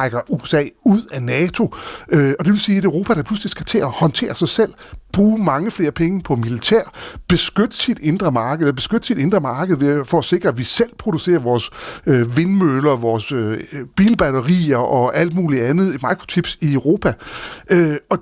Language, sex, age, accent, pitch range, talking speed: Danish, male, 60-79, native, 135-190 Hz, 170 wpm